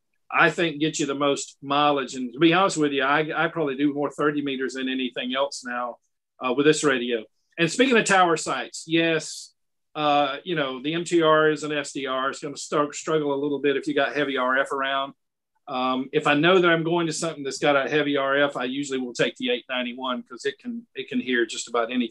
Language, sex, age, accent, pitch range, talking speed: English, male, 50-69, American, 140-175 Hz, 235 wpm